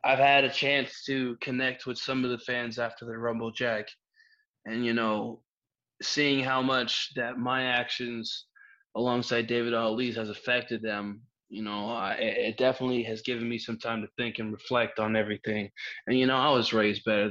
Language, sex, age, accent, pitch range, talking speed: English, male, 20-39, American, 110-125 Hz, 180 wpm